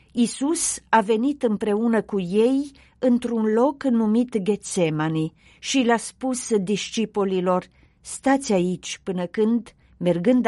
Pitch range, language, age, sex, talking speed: 190-255 Hz, Romanian, 40-59, female, 115 wpm